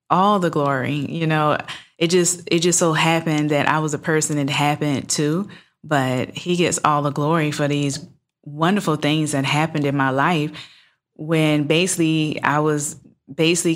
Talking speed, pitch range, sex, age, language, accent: 175 wpm, 145-170 Hz, female, 20-39, English, American